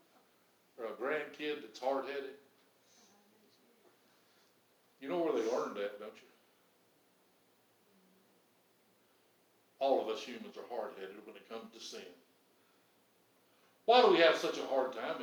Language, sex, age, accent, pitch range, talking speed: English, male, 60-79, American, 170-235 Hz, 125 wpm